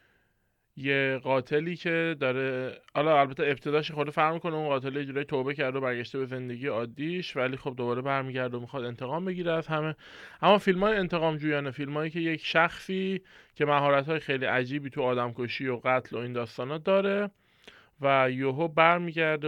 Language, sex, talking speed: Persian, male, 160 wpm